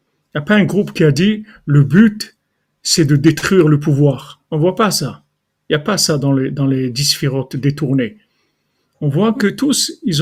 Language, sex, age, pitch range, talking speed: French, male, 50-69, 140-175 Hz, 215 wpm